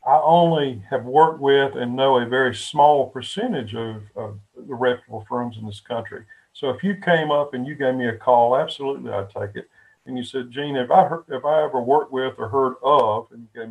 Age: 50-69